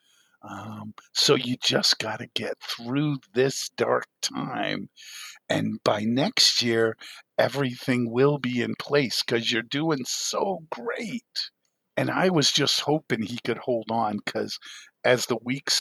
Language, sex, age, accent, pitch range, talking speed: English, male, 50-69, American, 115-145 Hz, 145 wpm